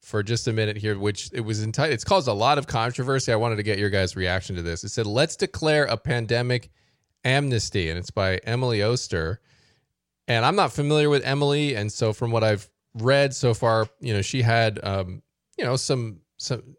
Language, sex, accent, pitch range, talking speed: English, male, American, 105-135 Hz, 210 wpm